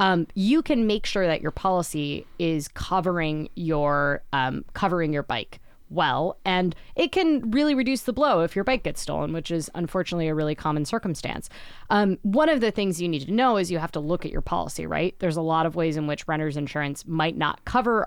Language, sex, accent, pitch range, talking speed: English, female, American, 150-195 Hz, 215 wpm